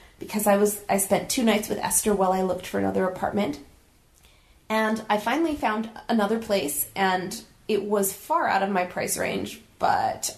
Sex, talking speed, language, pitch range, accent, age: female, 180 wpm, English, 195-230 Hz, American, 30-49